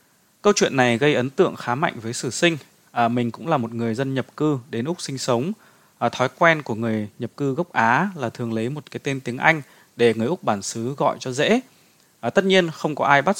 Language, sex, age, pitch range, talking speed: Vietnamese, male, 20-39, 115-150 Hz, 235 wpm